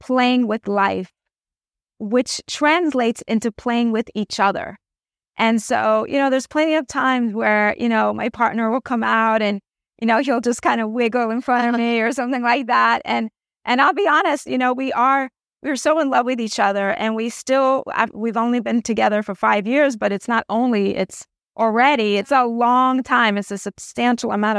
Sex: female